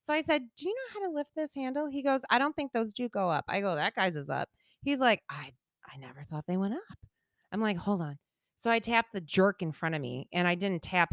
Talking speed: 280 wpm